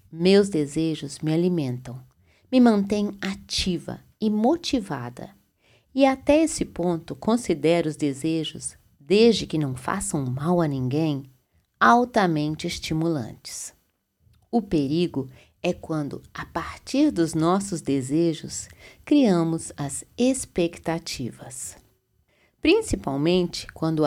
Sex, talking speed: female, 95 wpm